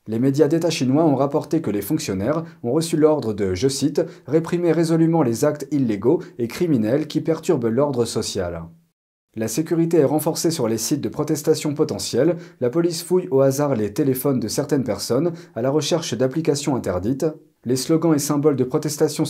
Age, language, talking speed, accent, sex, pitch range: 40-59, French, 175 wpm, French, male, 120-160 Hz